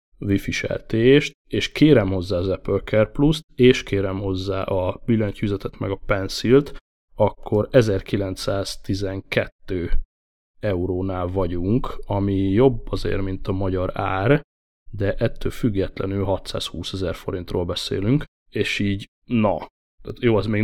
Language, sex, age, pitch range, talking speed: Hungarian, male, 20-39, 95-110 Hz, 115 wpm